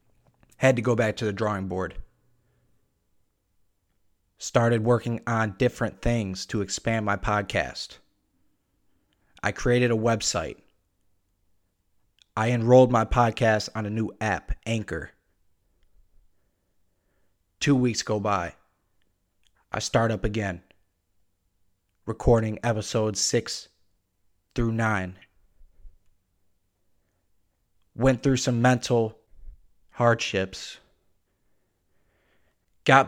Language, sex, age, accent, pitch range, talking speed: English, male, 30-49, American, 95-115 Hz, 90 wpm